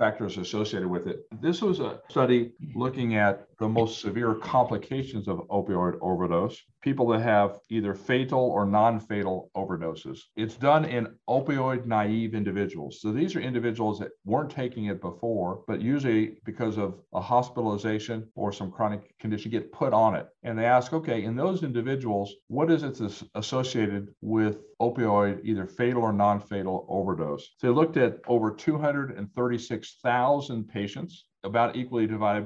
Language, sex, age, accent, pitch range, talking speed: English, male, 50-69, American, 100-125 Hz, 150 wpm